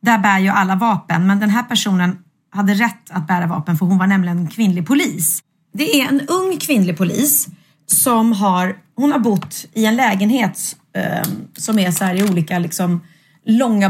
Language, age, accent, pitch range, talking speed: Swedish, 30-49, native, 175-230 Hz, 185 wpm